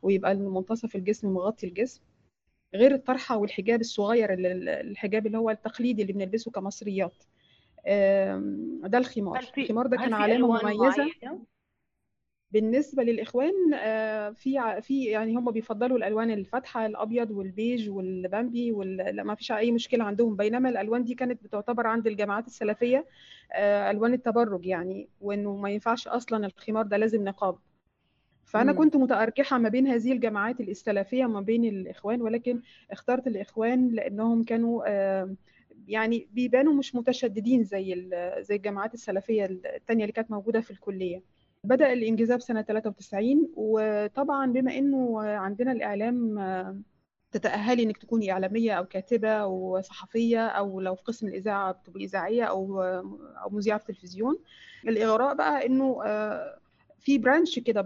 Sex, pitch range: female, 200-245 Hz